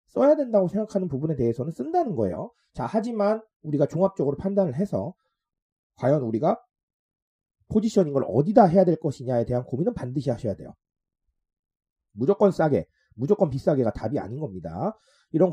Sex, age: male, 30-49